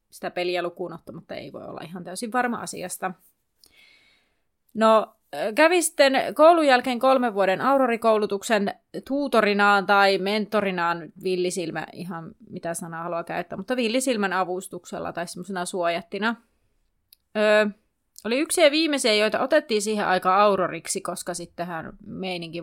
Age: 30-49